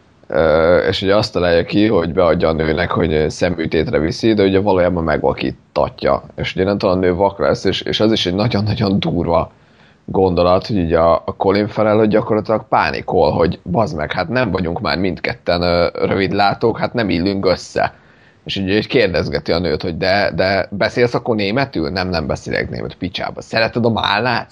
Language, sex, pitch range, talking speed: Hungarian, male, 85-105 Hz, 175 wpm